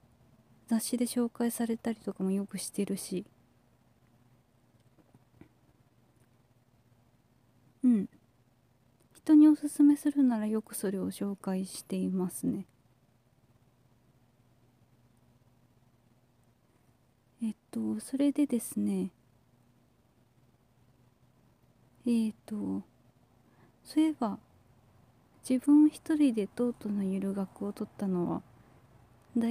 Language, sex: Japanese, female